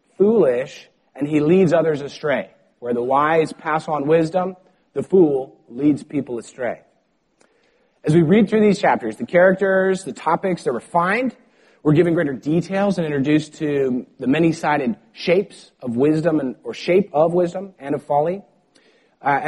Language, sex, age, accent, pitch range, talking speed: English, male, 30-49, American, 140-185 Hz, 155 wpm